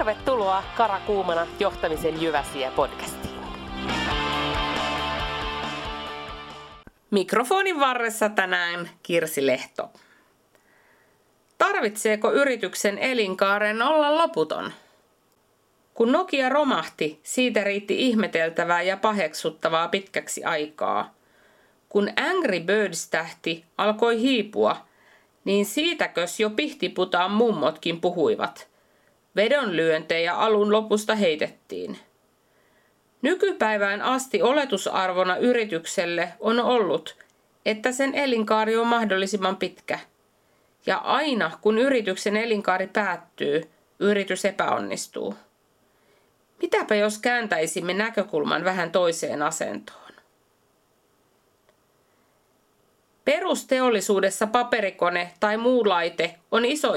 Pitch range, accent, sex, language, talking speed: 170-230 Hz, native, female, Finnish, 75 wpm